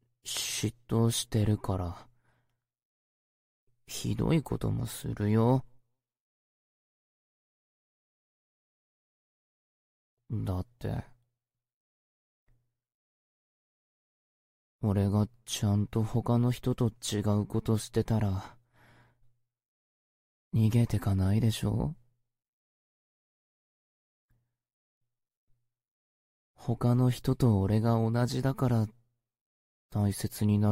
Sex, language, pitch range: male, Chinese, 105-120 Hz